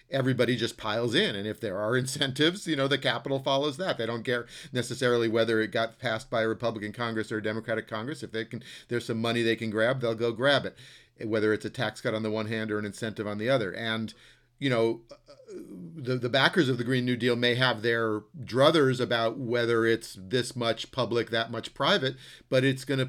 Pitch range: 110-130 Hz